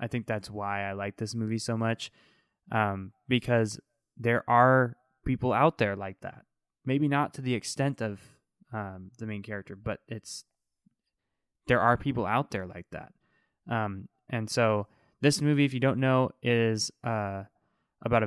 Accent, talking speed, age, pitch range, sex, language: American, 165 wpm, 20-39, 105-125 Hz, male, English